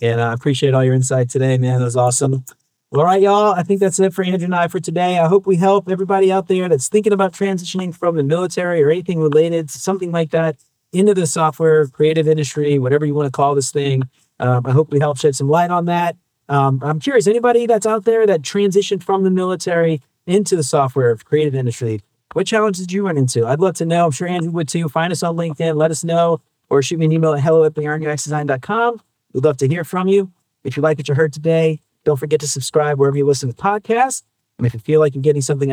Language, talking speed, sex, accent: English, 245 wpm, male, American